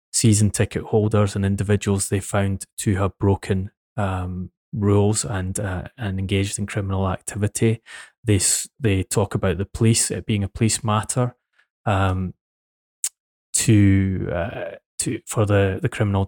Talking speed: 140 wpm